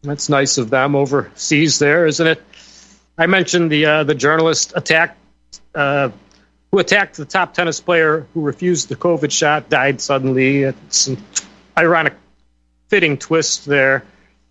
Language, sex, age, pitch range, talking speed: English, male, 40-59, 100-165 Hz, 145 wpm